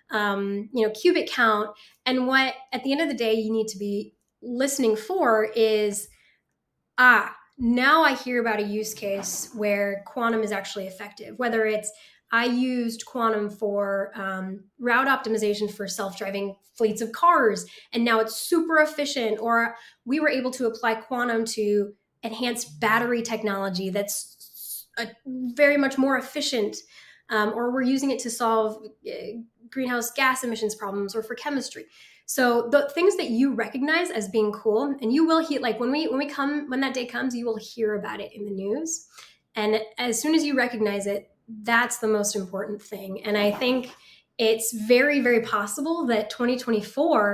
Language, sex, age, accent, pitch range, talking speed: English, female, 10-29, American, 210-255 Hz, 170 wpm